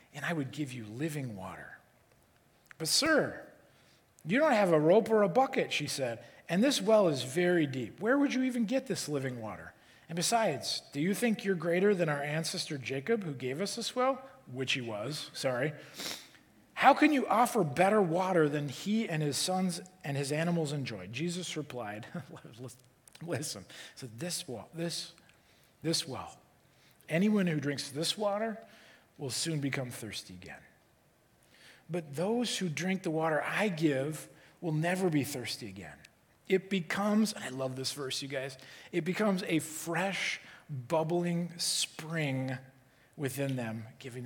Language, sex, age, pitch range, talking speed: English, male, 40-59, 130-185 Hz, 160 wpm